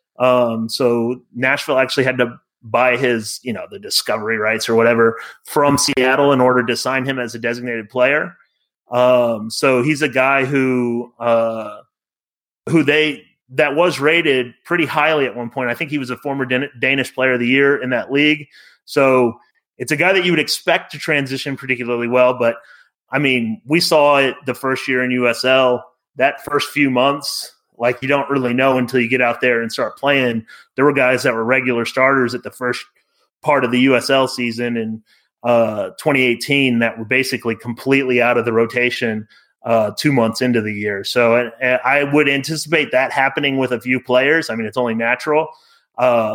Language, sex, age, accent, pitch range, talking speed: English, male, 30-49, American, 120-140 Hz, 190 wpm